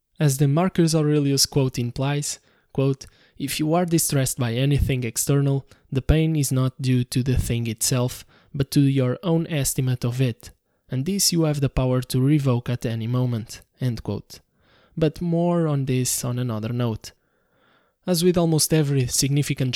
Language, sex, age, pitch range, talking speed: English, male, 20-39, 120-145 Hz, 160 wpm